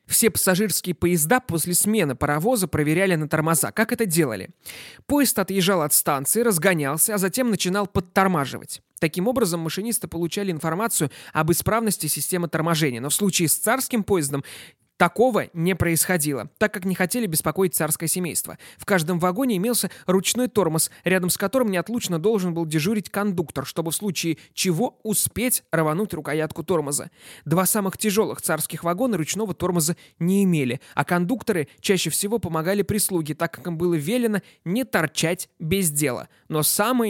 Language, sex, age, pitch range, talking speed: Russian, male, 20-39, 155-200 Hz, 150 wpm